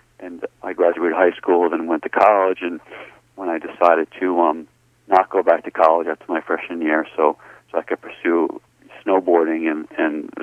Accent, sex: American, male